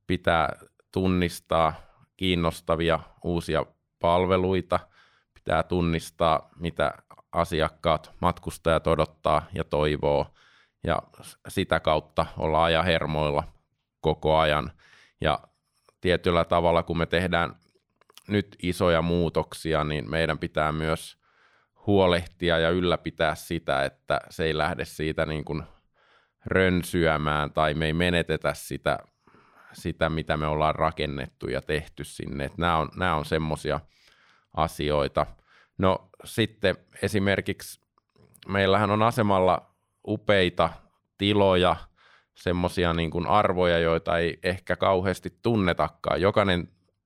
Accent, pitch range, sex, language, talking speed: native, 80-90 Hz, male, Finnish, 100 wpm